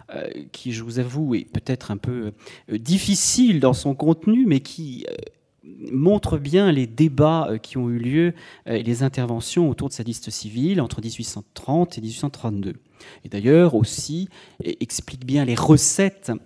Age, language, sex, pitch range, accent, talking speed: 40-59, French, male, 120-160 Hz, French, 150 wpm